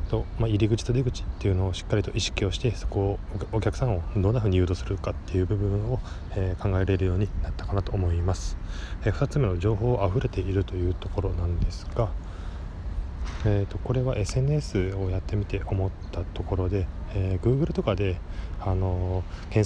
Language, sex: Japanese, male